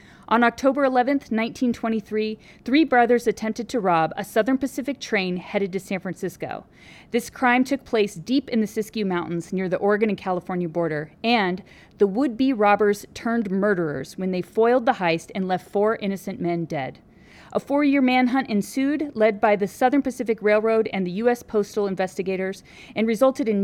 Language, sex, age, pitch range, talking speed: English, female, 40-59, 185-235 Hz, 170 wpm